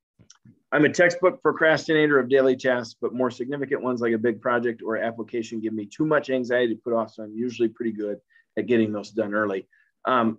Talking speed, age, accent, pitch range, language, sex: 210 wpm, 30-49, American, 115-145 Hz, English, male